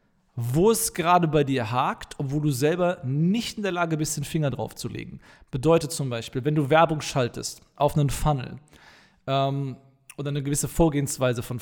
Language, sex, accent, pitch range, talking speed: German, male, German, 125-155 Hz, 180 wpm